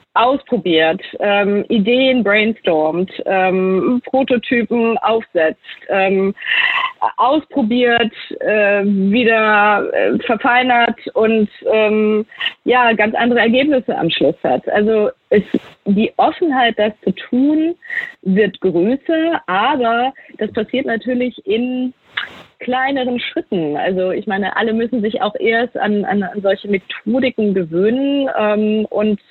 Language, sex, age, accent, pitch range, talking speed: German, female, 20-39, German, 190-245 Hz, 110 wpm